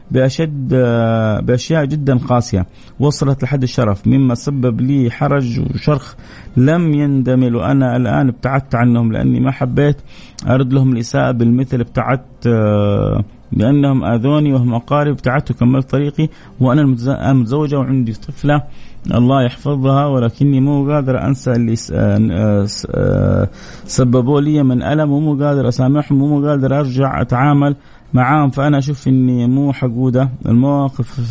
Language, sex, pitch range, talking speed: Arabic, male, 120-140 Hz, 120 wpm